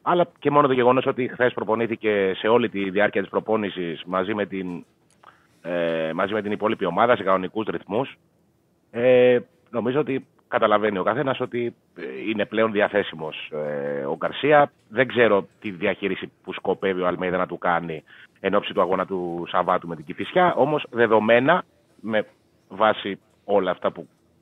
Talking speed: 150 wpm